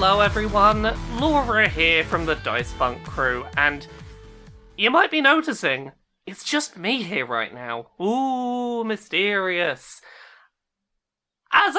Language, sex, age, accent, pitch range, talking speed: English, male, 20-39, British, 165-240 Hz, 115 wpm